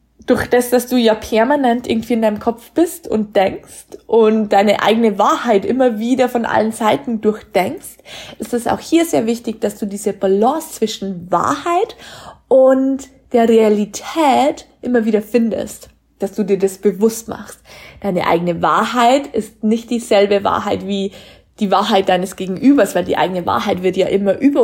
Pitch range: 200-255 Hz